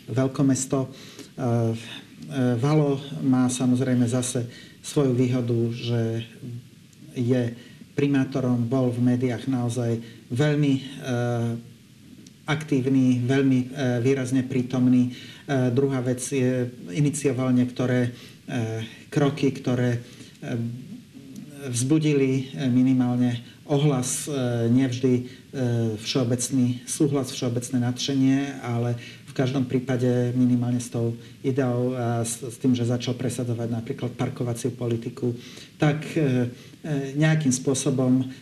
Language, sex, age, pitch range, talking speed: Slovak, male, 40-59, 125-140 Hz, 85 wpm